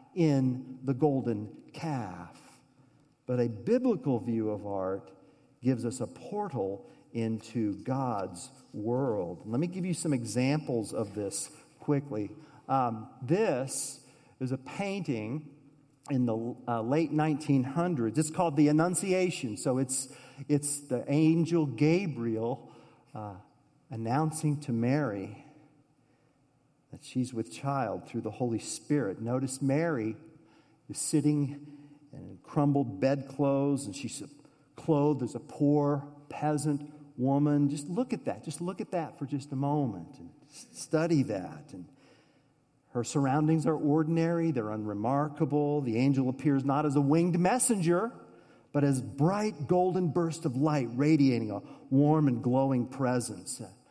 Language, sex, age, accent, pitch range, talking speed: English, male, 50-69, American, 125-155 Hz, 130 wpm